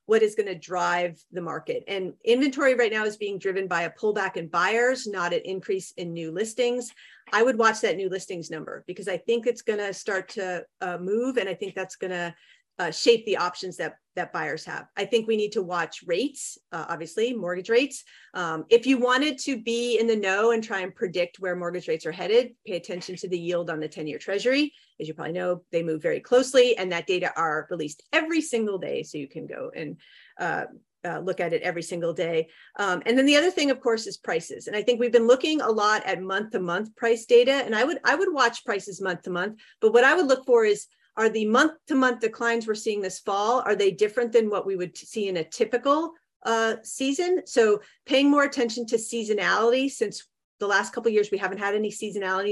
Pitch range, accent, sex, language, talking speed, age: 180-250 Hz, American, female, English, 225 wpm, 40-59